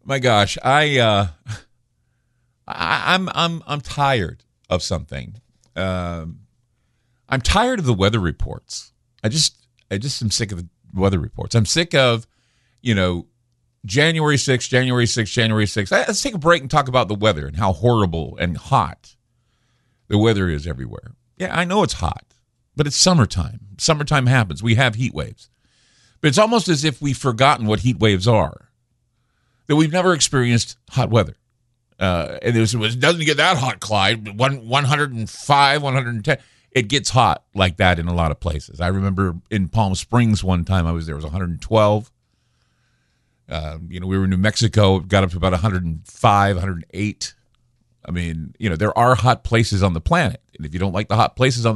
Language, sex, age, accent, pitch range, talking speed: English, male, 50-69, American, 100-130 Hz, 185 wpm